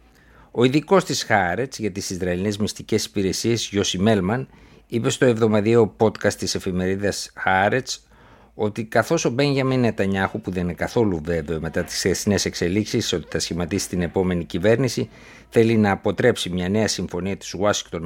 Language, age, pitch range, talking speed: Greek, 50-69, 90-115 Hz, 155 wpm